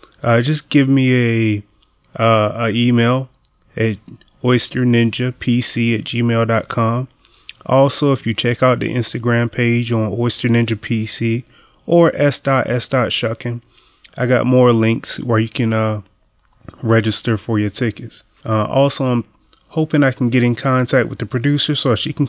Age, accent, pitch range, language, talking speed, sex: 30-49, American, 115-135 Hz, English, 150 wpm, male